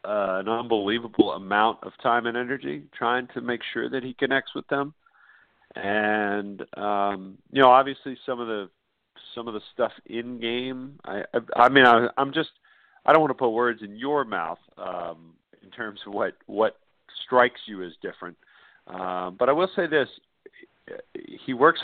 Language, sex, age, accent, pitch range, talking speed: English, male, 50-69, American, 95-125 Hz, 180 wpm